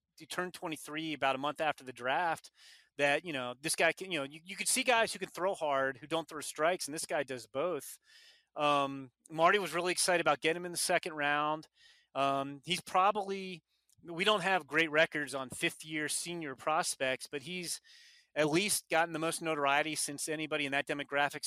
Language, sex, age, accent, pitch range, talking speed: English, male, 30-49, American, 145-185 Hz, 205 wpm